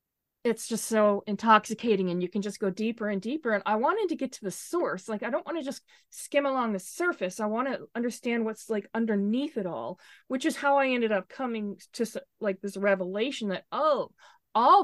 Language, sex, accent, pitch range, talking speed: English, female, American, 180-220 Hz, 215 wpm